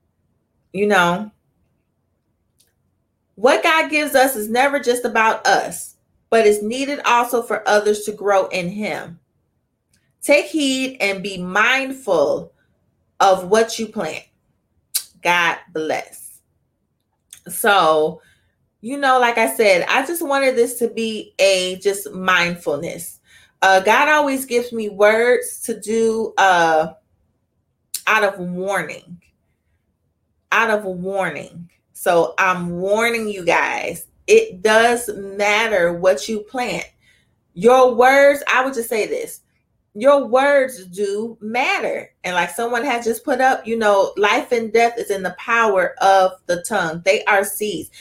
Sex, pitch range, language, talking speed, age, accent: female, 185-240 Hz, English, 135 wpm, 30-49, American